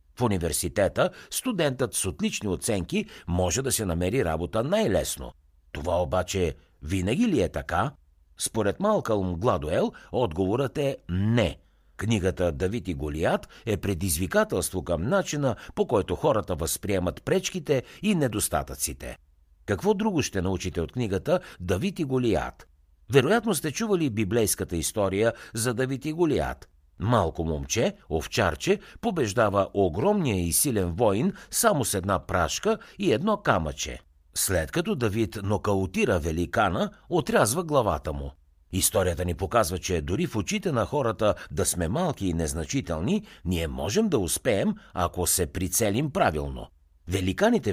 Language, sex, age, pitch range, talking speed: Bulgarian, male, 60-79, 85-135 Hz, 130 wpm